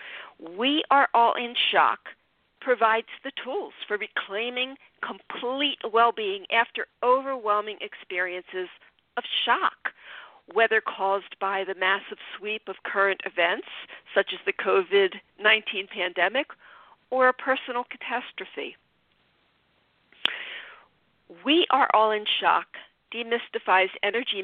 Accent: American